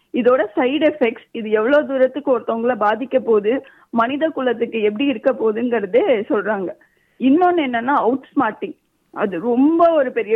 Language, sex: Tamil, female